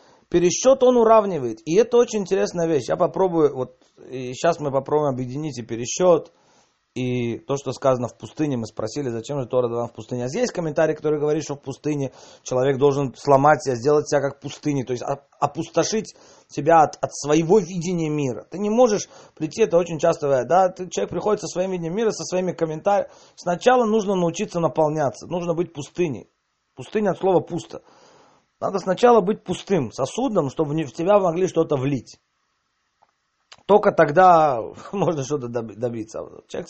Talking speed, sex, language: 170 wpm, male, Russian